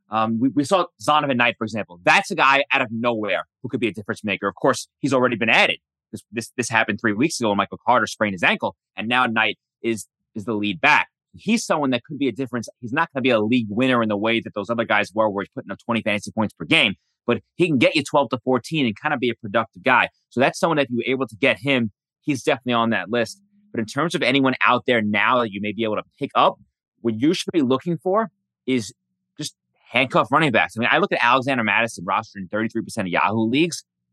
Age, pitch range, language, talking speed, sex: 30-49, 115-145 Hz, English, 260 wpm, male